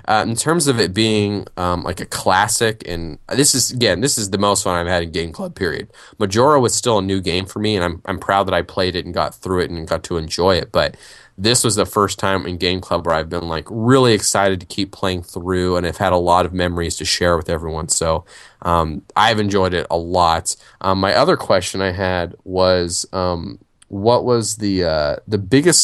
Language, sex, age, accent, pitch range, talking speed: English, male, 20-39, American, 90-110 Hz, 235 wpm